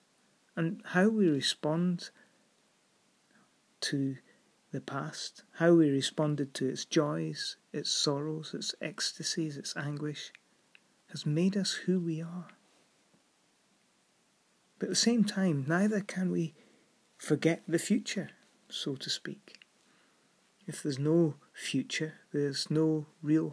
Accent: British